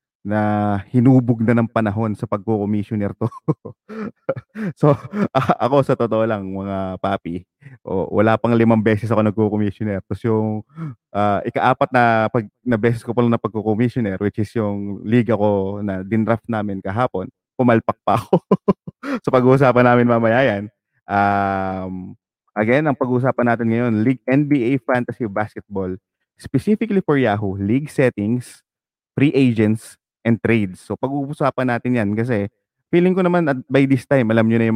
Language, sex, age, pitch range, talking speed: English, male, 20-39, 100-130 Hz, 150 wpm